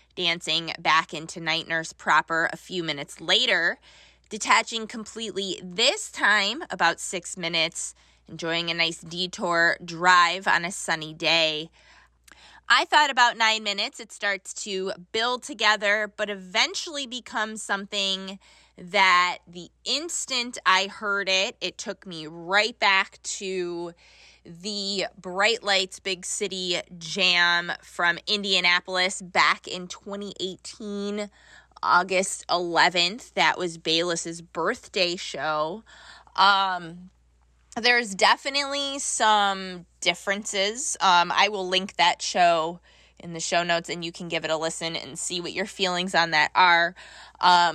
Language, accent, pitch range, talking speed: English, American, 165-205 Hz, 125 wpm